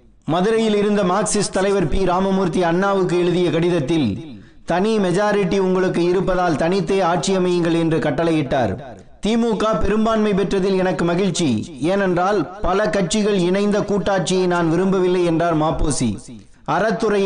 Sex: male